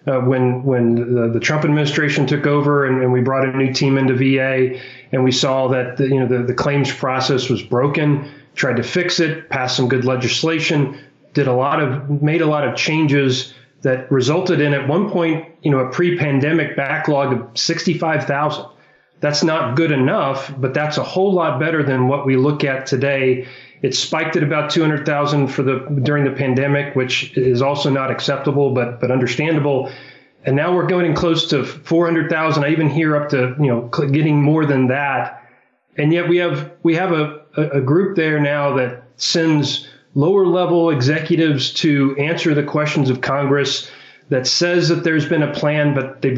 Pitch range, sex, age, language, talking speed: 130-155 Hz, male, 30-49, English, 185 wpm